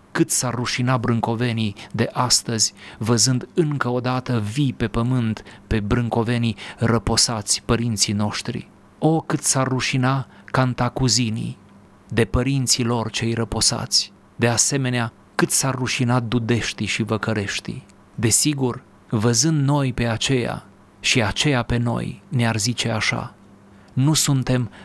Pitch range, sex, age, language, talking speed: 110-130 Hz, male, 30-49, Romanian, 120 wpm